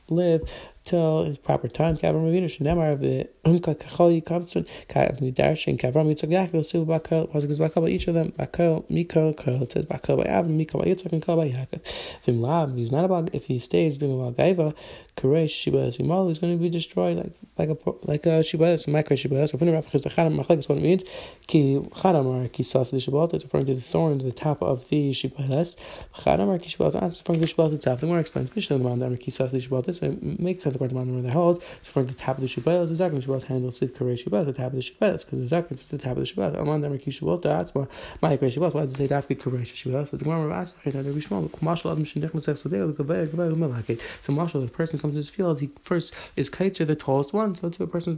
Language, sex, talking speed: English, male, 115 wpm